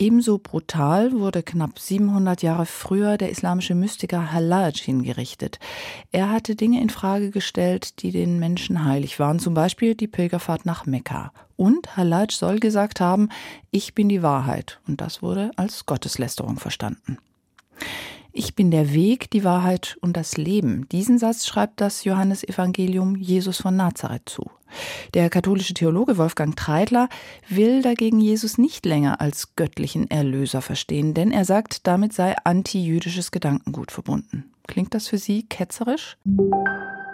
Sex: female